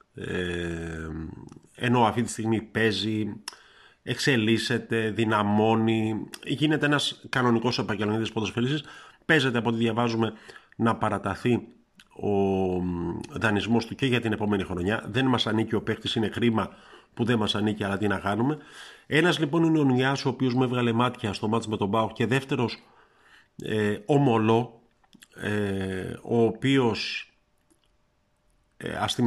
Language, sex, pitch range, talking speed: Greek, male, 100-120 Hz, 125 wpm